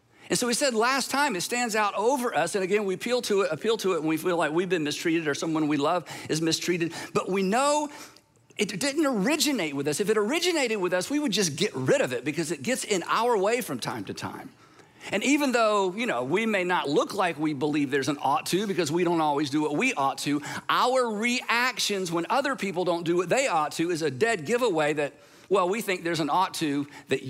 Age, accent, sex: 50-69, American, male